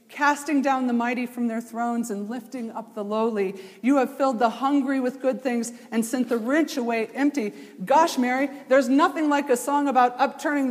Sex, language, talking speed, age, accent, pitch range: female, English, 195 wpm, 40-59, American, 215-260 Hz